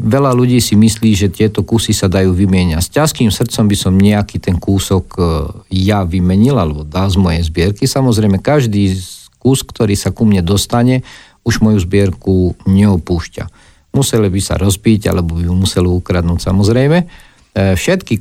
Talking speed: 160 wpm